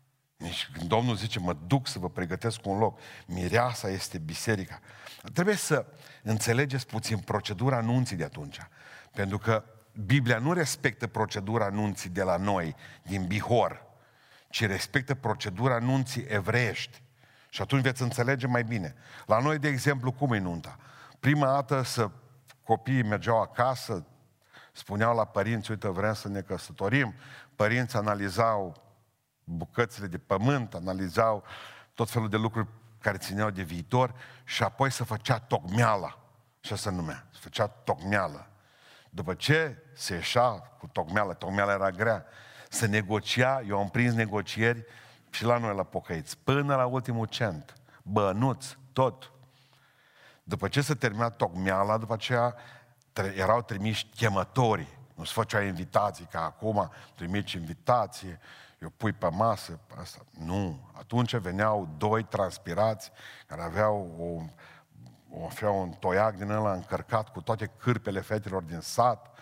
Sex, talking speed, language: male, 135 wpm, Romanian